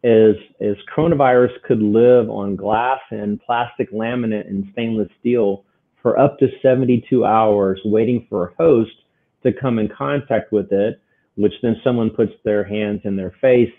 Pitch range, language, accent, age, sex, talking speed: 105-130 Hz, English, American, 40-59, male, 160 wpm